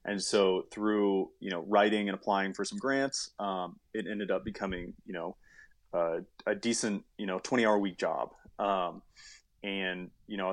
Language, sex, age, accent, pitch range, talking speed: English, male, 20-39, American, 95-115 Hz, 175 wpm